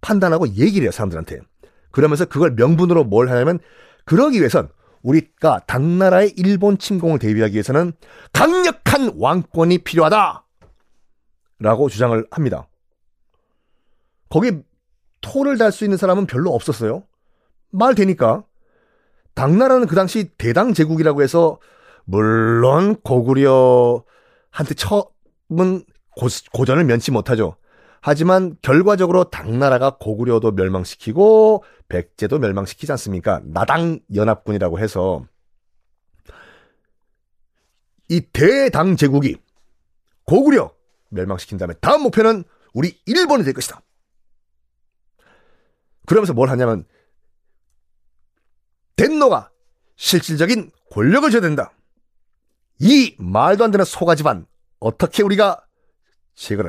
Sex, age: male, 30-49